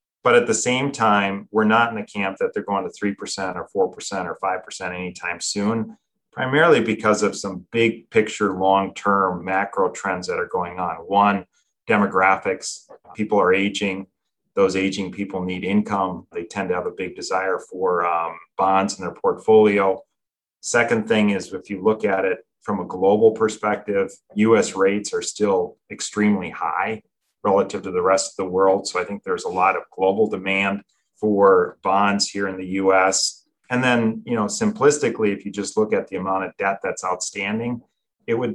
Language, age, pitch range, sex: English, 30-49, 95-115 Hz, male